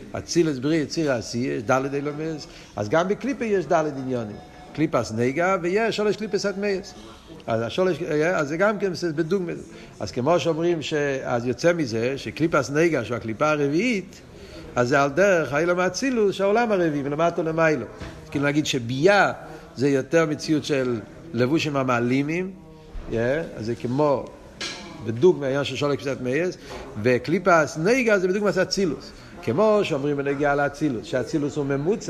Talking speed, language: 85 wpm, Hebrew